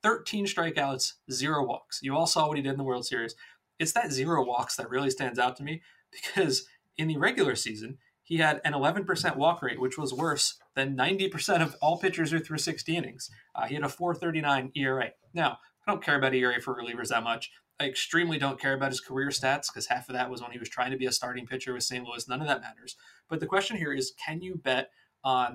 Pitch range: 125-155 Hz